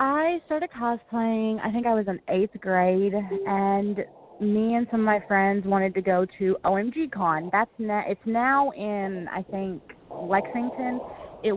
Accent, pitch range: American, 185-230 Hz